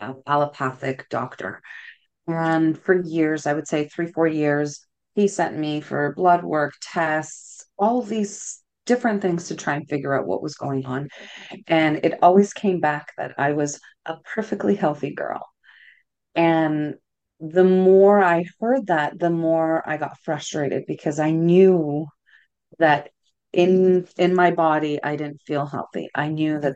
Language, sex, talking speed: English, female, 155 wpm